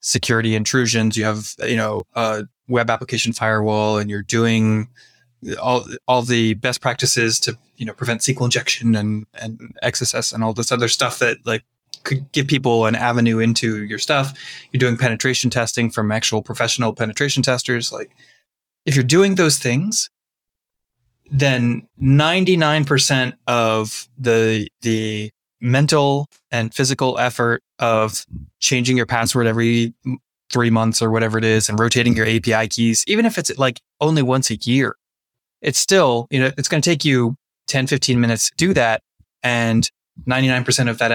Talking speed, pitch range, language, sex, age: 160 wpm, 115-130 Hz, English, male, 20-39